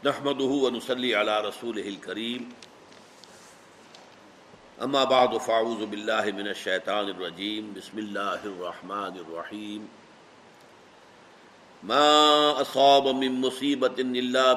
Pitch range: 110-145 Hz